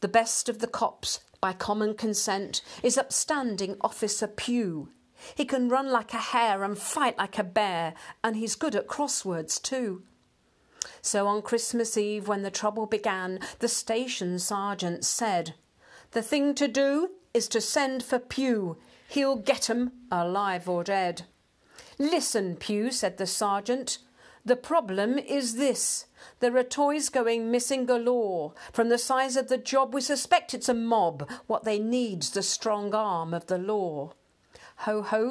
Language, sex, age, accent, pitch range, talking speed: English, female, 50-69, British, 190-240 Hz, 155 wpm